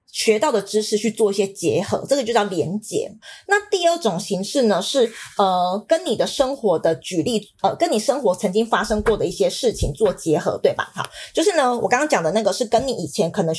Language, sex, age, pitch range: Chinese, female, 20-39, 195-255 Hz